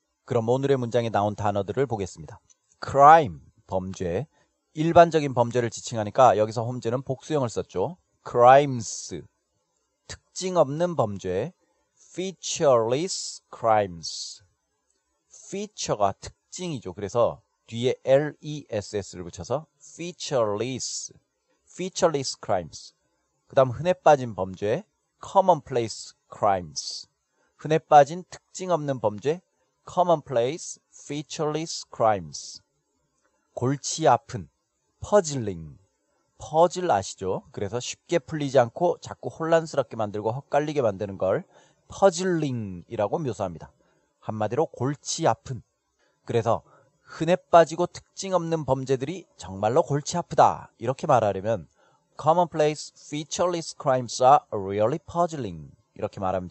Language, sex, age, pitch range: Korean, male, 40-59, 105-160 Hz